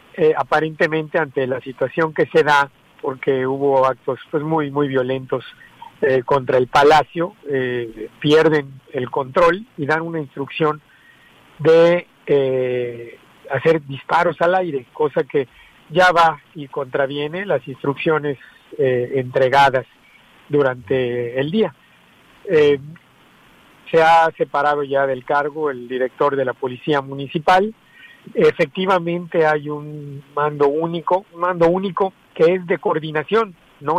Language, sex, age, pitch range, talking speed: Spanish, male, 50-69, 135-170 Hz, 125 wpm